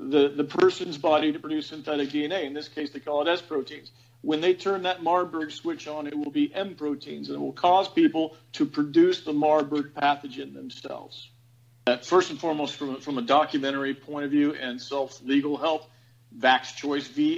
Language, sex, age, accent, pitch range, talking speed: English, male, 50-69, American, 130-150 Hz, 175 wpm